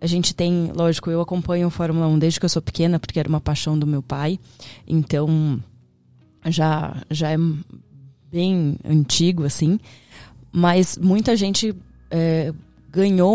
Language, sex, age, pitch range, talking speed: Portuguese, female, 20-39, 150-180 Hz, 145 wpm